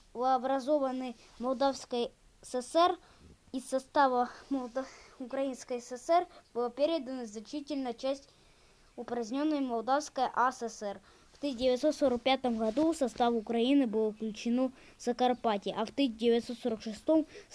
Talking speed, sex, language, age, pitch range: 100 wpm, female, Russian, 20-39, 245-295 Hz